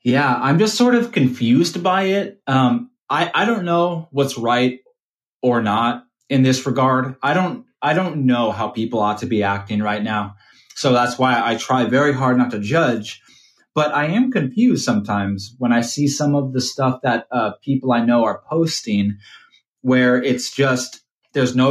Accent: American